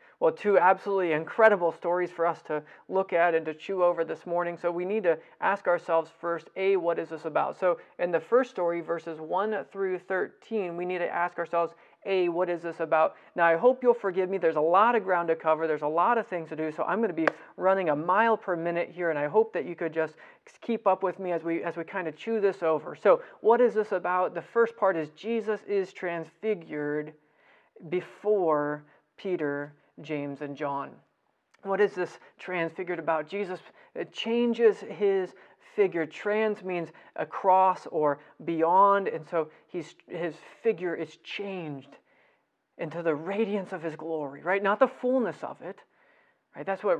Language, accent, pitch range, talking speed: English, American, 160-195 Hz, 195 wpm